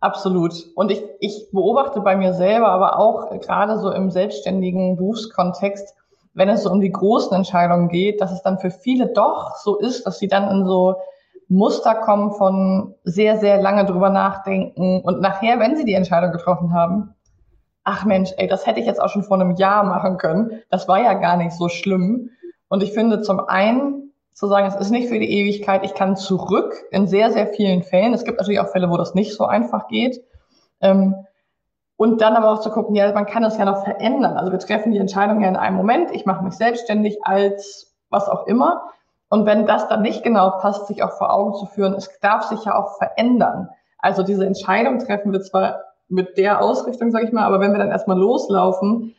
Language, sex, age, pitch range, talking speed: German, female, 20-39, 190-215 Hz, 210 wpm